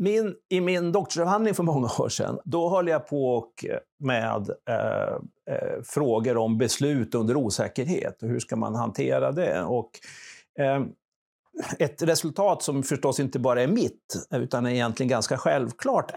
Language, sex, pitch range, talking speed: Swedish, male, 120-170 Hz, 130 wpm